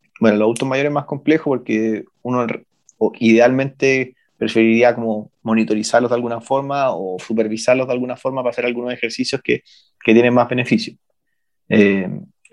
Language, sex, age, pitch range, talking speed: Romanian, male, 30-49, 110-130 Hz, 150 wpm